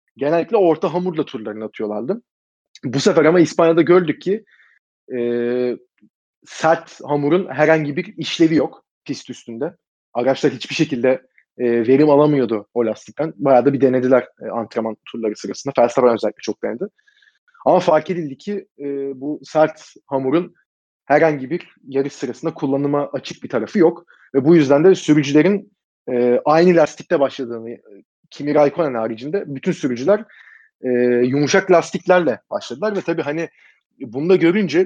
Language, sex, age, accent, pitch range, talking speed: Turkish, male, 30-49, native, 130-175 Hz, 140 wpm